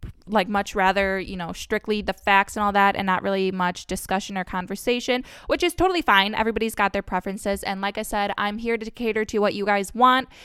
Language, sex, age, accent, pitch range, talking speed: English, female, 20-39, American, 190-220 Hz, 225 wpm